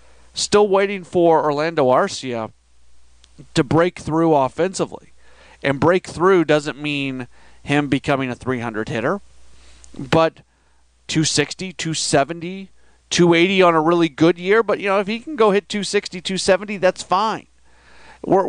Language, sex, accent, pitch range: English, male, American, 130-160 Hz